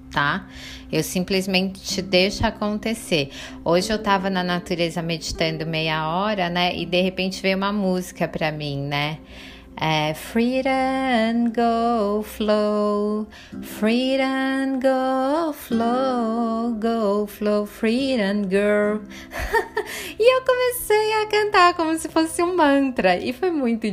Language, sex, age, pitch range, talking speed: Portuguese, female, 20-39, 170-230 Hz, 115 wpm